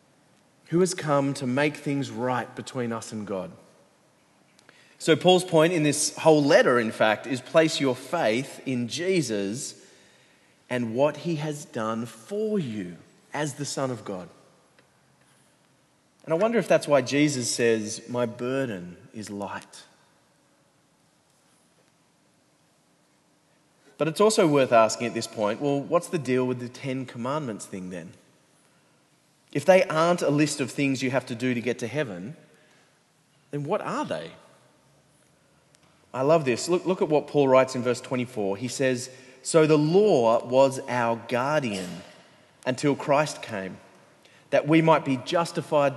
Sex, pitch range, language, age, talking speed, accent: male, 120-155 Hz, English, 30-49, 150 wpm, Australian